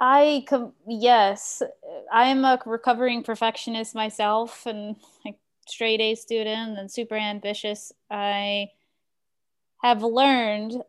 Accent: American